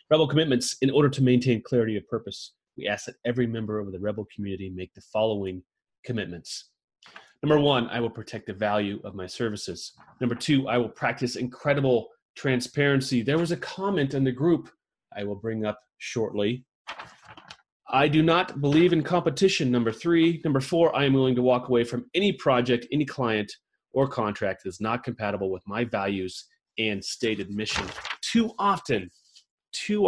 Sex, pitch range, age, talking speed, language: male, 110-155 Hz, 30-49, 175 wpm, English